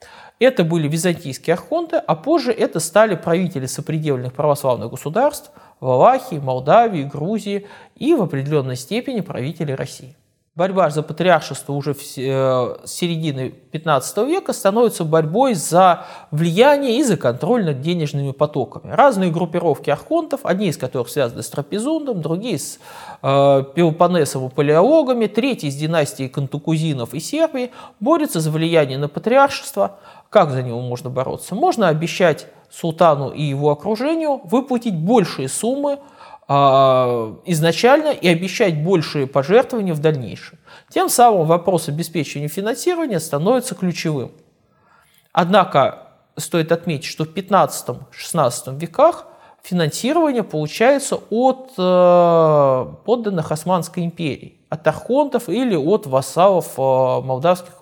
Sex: male